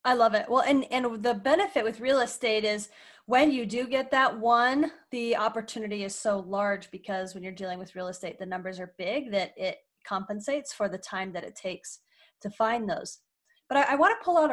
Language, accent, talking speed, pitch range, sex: English, American, 220 wpm, 215-280 Hz, female